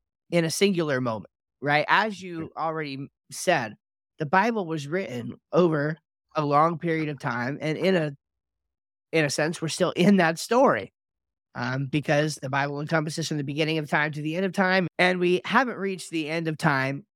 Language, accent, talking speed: English, American, 185 wpm